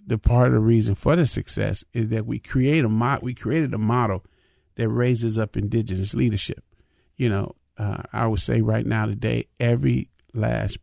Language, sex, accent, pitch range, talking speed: English, male, American, 105-115 Hz, 190 wpm